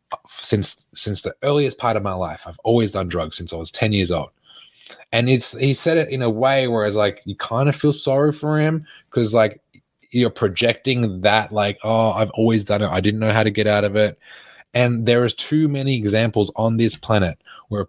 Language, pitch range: English, 105-145 Hz